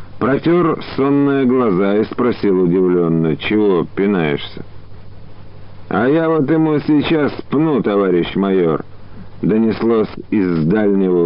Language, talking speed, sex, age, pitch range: Russian, 100 wpm, male, 50-69, 90-110 Hz